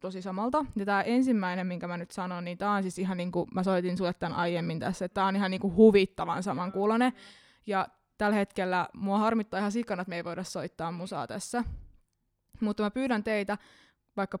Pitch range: 180-210 Hz